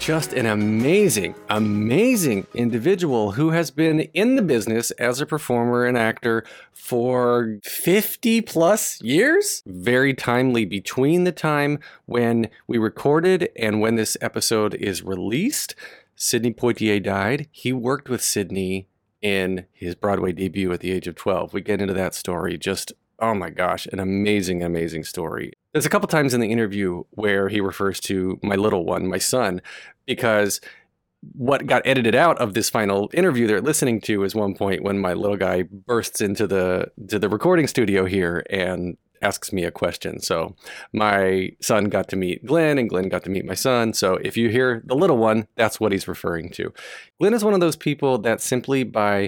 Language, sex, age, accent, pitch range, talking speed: English, male, 30-49, American, 100-130 Hz, 175 wpm